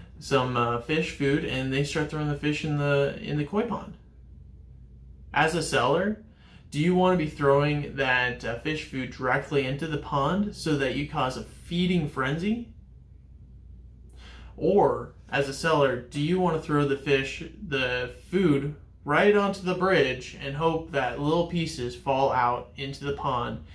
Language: English